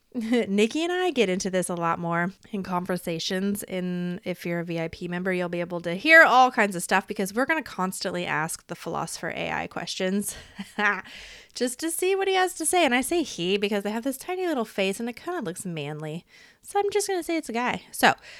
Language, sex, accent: English, female, American